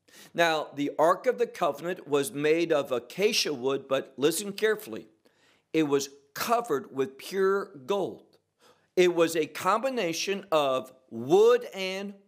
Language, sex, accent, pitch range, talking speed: English, male, American, 140-215 Hz, 130 wpm